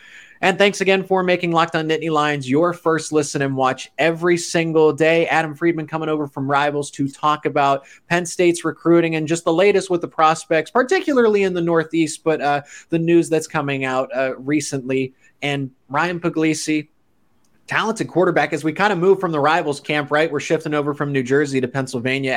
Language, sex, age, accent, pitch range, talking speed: English, male, 20-39, American, 135-170 Hz, 195 wpm